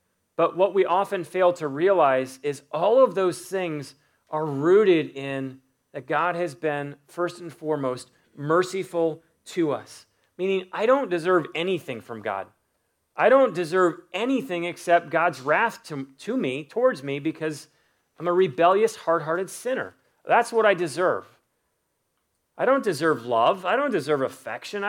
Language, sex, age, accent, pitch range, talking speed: English, male, 30-49, American, 150-195 Hz, 150 wpm